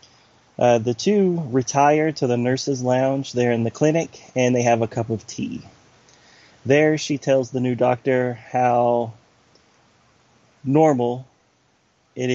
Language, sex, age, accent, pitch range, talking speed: English, male, 30-49, American, 115-140 Hz, 135 wpm